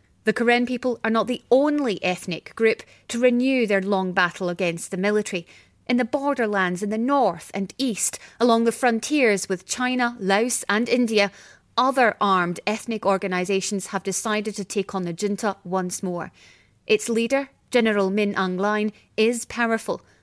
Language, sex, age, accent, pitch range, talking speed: English, female, 30-49, British, 190-245 Hz, 160 wpm